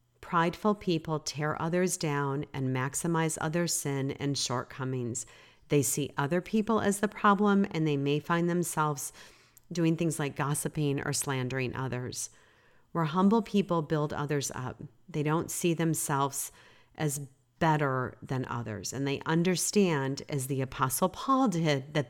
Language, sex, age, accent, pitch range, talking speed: English, female, 40-59, American, 135-170 Hz, 145 wpm